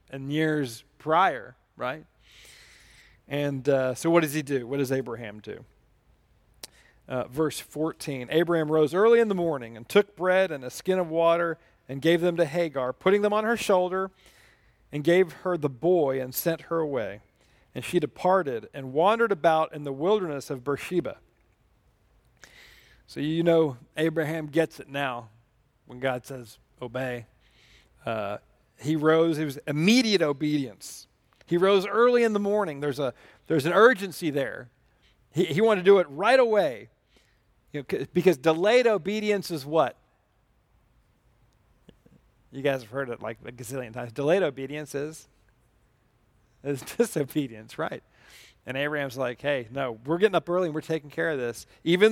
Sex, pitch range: male, 130-180 Hz